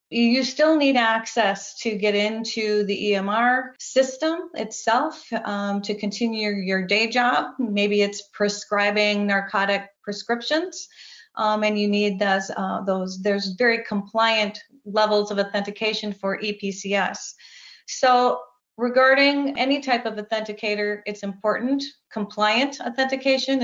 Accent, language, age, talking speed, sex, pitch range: American, English, 30-49, 120 wpm, female, 205-245 Hz